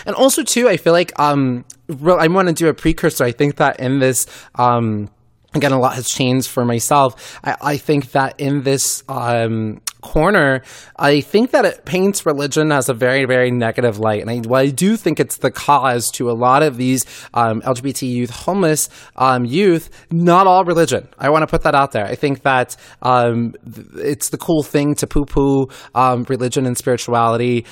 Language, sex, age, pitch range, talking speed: English, male, 20-39, 115-145 Hz, 190 wpm